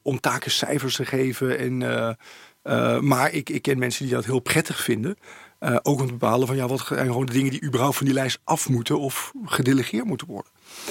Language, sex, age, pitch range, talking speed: English, male, 40-59, 120-145 Hz, 225 wpm